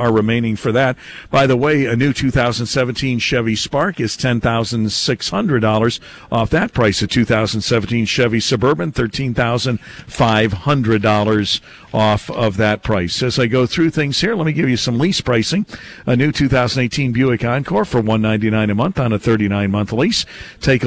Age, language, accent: 50-69, English, American